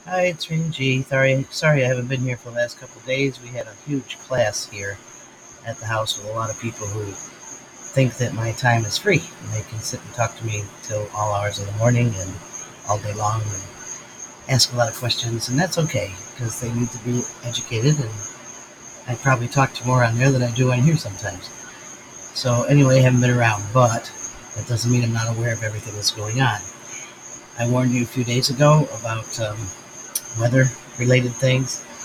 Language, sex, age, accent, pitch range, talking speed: English, male, 40-59, American, 110-130 Hz, 215 wpm